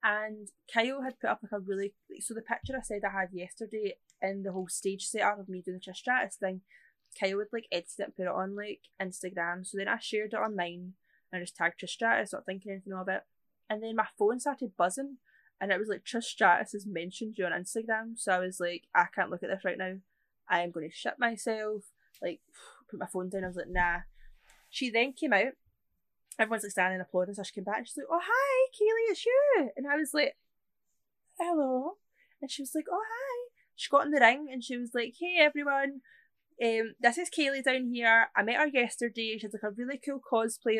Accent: British